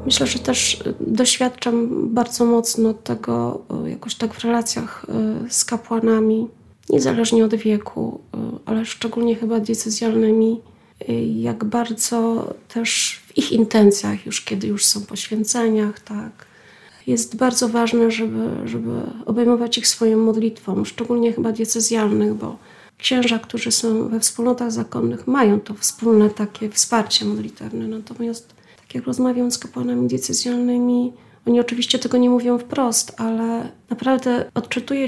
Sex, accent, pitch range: female, native, 215-240 Hz